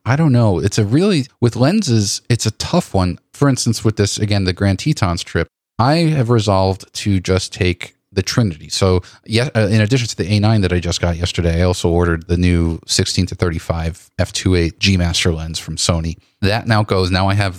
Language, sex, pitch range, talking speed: English, male, 90-115 Hz, 210 wpm